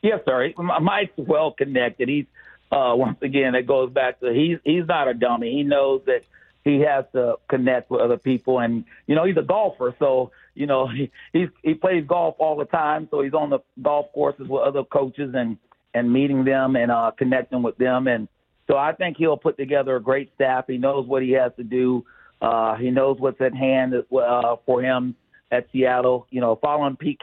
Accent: American